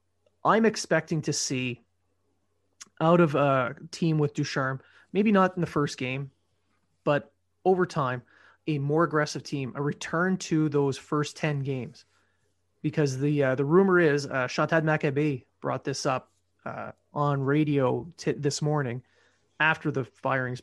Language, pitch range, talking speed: English, 125-160 Hz, 150 wpm